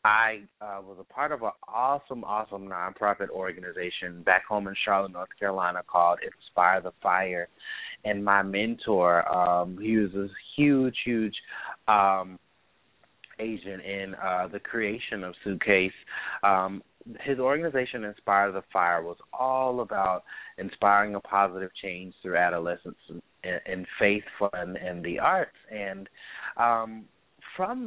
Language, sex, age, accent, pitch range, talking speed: English, male, 30-49, American, 90-110 Hz, 130 wpm